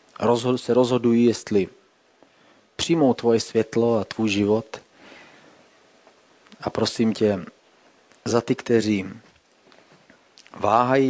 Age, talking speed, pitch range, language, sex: 30-49, 85 wpm, 75-110 Hz, Czech, male